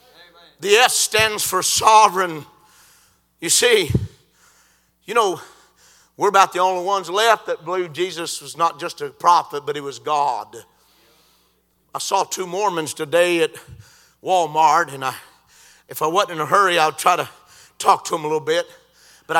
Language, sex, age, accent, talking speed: English, male, 50-69, American, 160 wpm